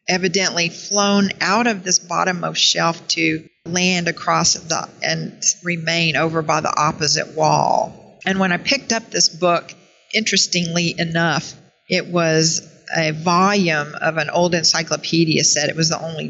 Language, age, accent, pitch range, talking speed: English, 50-69, American, 165-195 Hz, 145 wpm